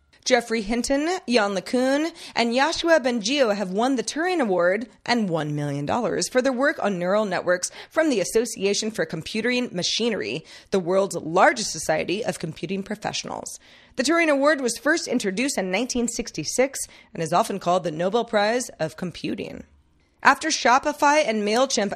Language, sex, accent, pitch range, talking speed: English, female, American, 185-245 Hz, 150 wpm